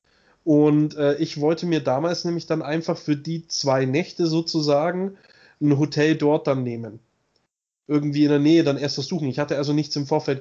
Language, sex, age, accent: German, male, 20-39, German